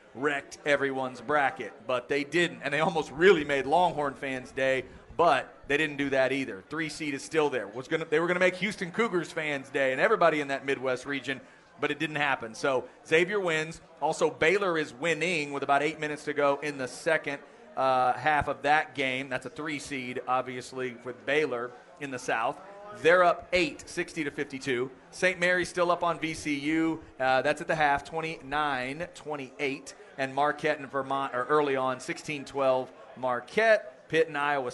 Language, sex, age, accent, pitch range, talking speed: English, male, 40-59, American, 135-160 Hz, 180 wpm